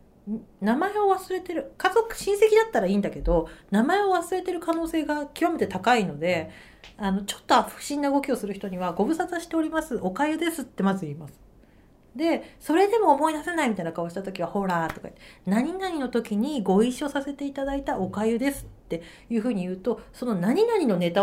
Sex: female